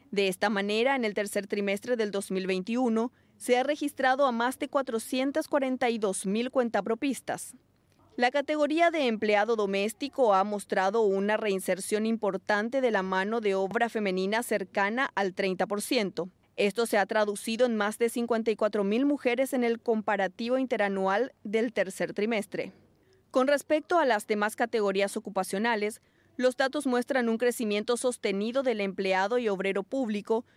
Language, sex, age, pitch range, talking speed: Spanish, female, 20-39, 200-255 Hz, 135 wpm